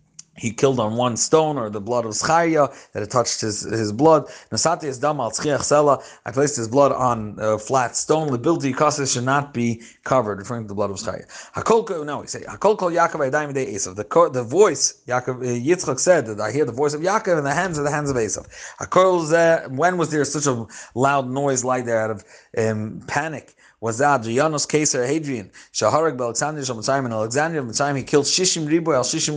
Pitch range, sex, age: 120-160 Hz, male, 30-49